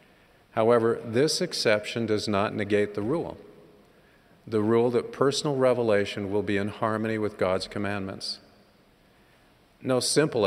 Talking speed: 120 wpm